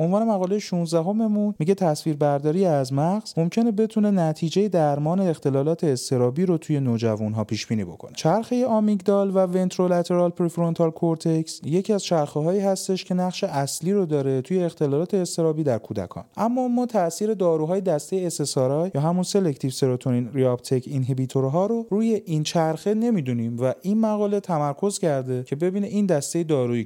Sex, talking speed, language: male, 150 wpm, Persian